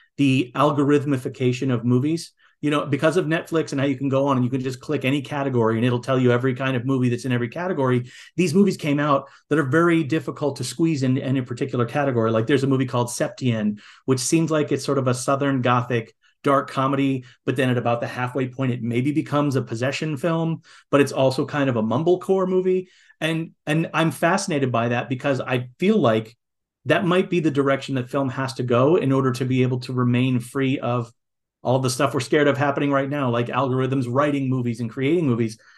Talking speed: 220 wpm